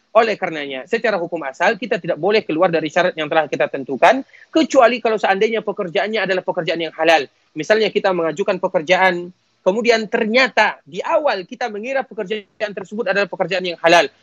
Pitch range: 170-220 Hz